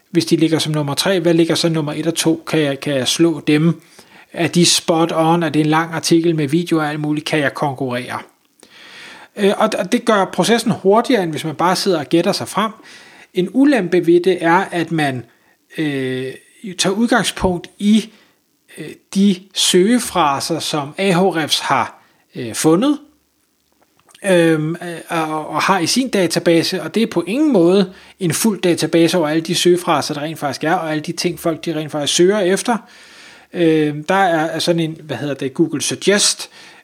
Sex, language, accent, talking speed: male, Danish, native, 180 wpm